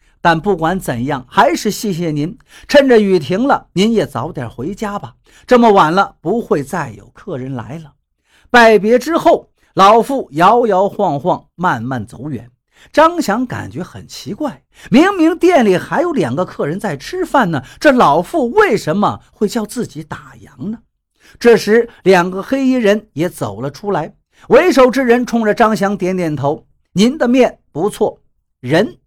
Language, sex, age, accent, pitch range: Chinese, male, 50-69, native, 160-255 Hz